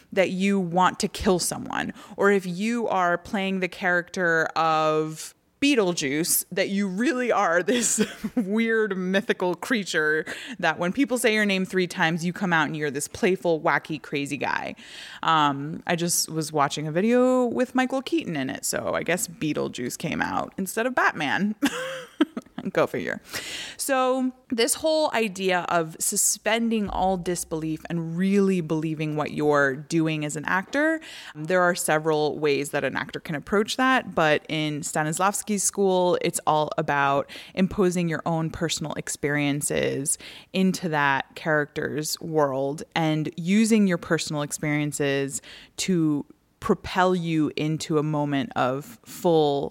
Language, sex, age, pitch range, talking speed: English, female, 20-39, 155-210 Hz, 145 wpm